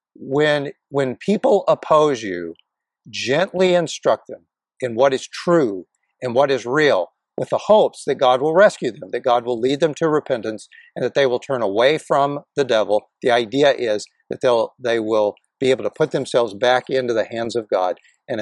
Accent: American